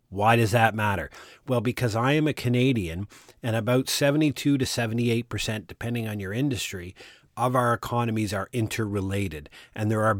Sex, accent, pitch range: male, American, 100-120 Hz